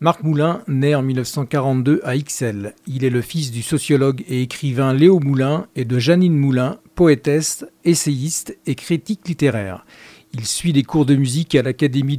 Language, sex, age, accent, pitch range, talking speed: French, male, 50-69, French, 130-160 Hz, 165 wpm